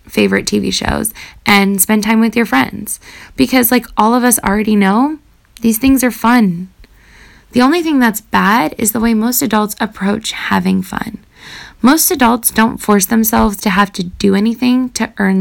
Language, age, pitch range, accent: English, 10-29, 195-235 Hz, American